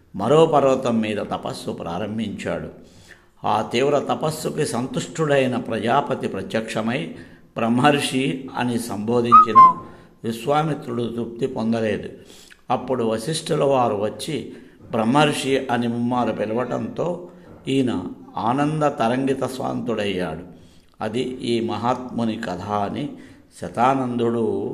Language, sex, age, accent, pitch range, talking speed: Telugu, male, 60-79, native, 115-145 Hz, 85 wpm